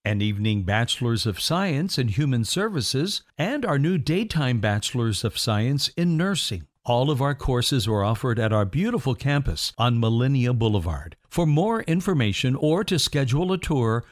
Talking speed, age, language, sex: 160 wpm, 60-79, English, male